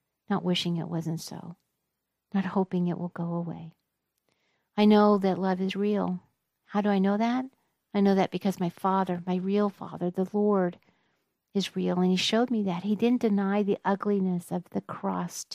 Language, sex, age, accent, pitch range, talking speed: English, female, 50-69, American, 175-200 Hz, 185 wpm